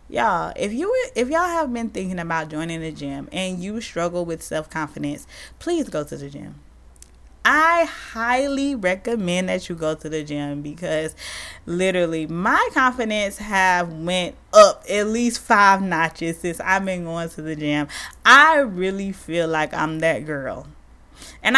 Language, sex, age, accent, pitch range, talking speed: English, female, 20-39, American, 165-245 Hz, 165 wpm